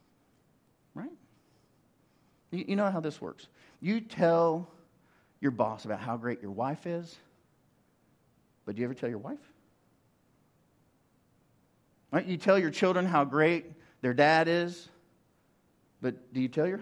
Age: 50-69